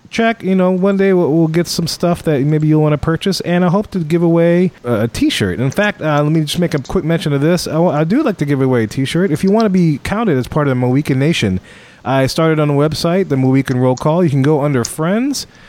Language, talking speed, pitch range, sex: English, 280 wpm, 135-180 Hz, male